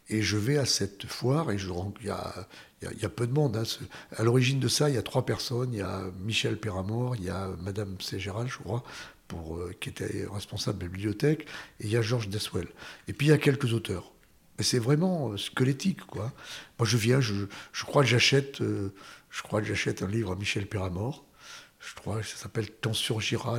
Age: 60-79